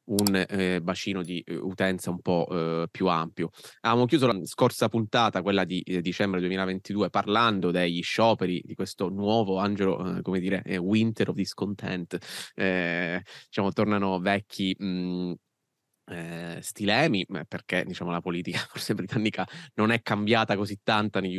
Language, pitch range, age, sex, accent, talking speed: Italian, 90-100 Hz, 20-39, male, native, 135 wpm